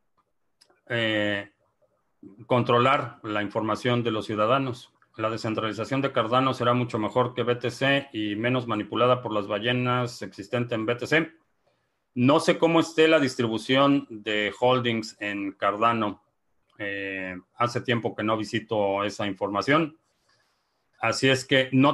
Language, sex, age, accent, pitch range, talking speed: Spanish, male, 40-59, Mexican, 105-130 Hz, 130 wpm